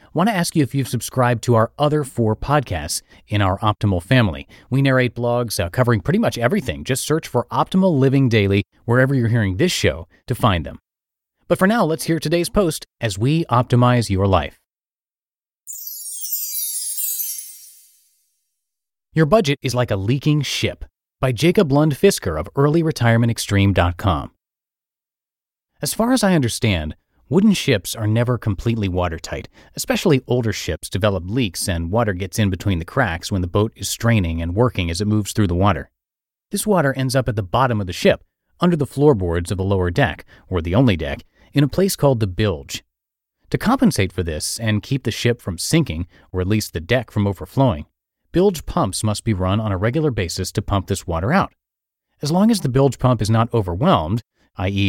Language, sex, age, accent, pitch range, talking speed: English, male, 30-49, American, 95-135 Hz, 180 wpm